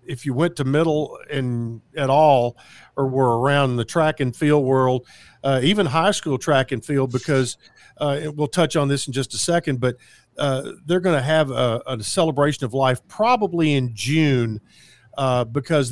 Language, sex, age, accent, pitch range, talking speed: English, male, 50-69, American, 125-145 Hz, 185 wpm